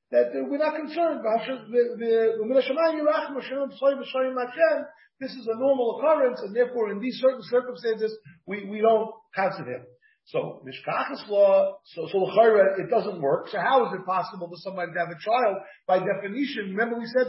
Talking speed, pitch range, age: 155 wpm, 195-265 Hz, 40-59